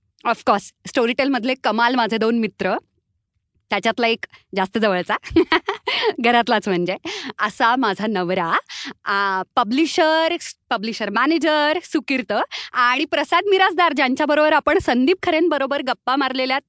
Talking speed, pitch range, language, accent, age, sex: 105 wpm, 220-290 Hz, Marathi, native, 30-49, female